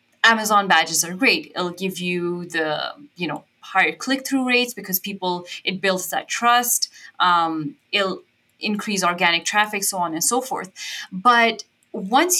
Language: English